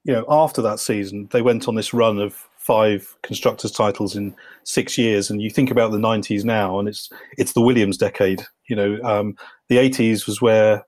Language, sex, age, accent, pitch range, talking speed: English, male, 40-59, British, 100-115 Hz, 205 wpm